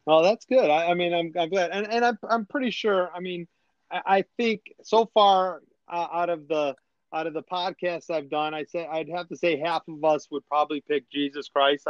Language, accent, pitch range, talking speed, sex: English, American, 145-175 Hz, 235 wpm, male